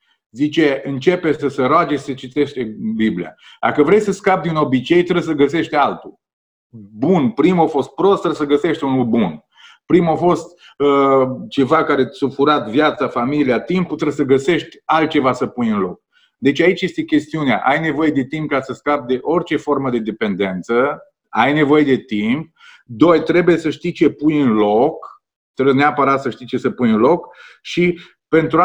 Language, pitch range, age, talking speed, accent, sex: Romanian, 130-160 Hz, 30-49, 180 wpm, native, male